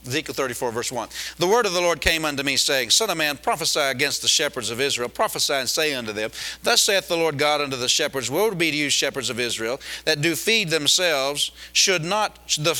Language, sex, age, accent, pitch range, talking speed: English, male, 40-59, American, 140-180 Hz, 230 wpm